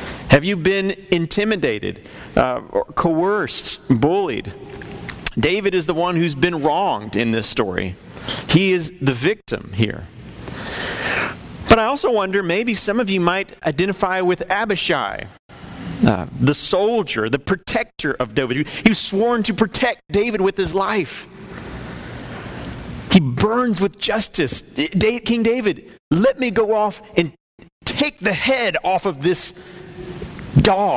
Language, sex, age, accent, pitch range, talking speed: English, male, 30-49, American, 165-205 Hz, 135 wpm